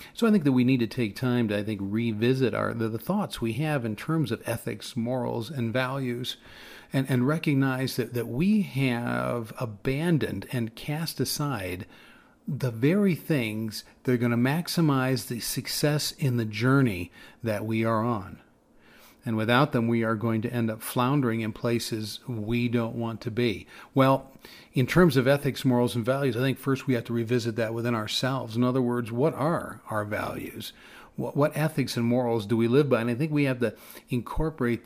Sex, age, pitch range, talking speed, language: male, 40-59, 115-135 Hz, 190 wpm, English